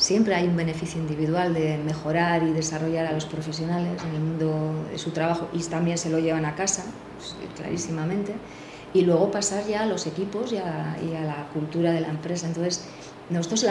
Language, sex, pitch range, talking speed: Spanish, female, 165-200 Hz, 200 wpm